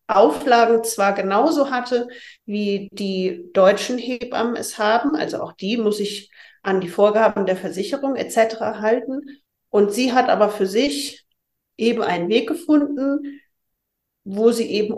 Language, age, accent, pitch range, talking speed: German, 40-59, German, 185-230 Hz, 140 wpm